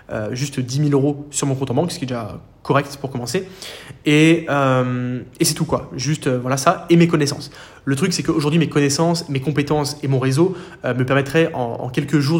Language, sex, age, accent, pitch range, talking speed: French, male, 20-39, French, 130-155 Hz, 230 wpm